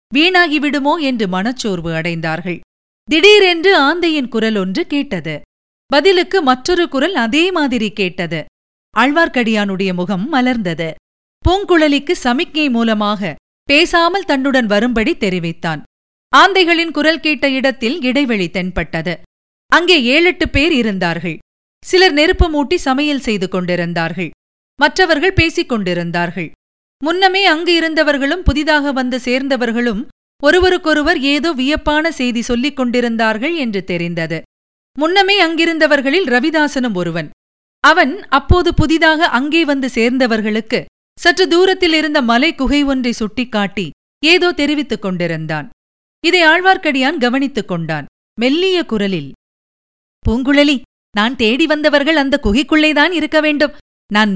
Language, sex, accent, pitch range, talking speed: Tamil, female, native, 210-315 Hz, 105 wpm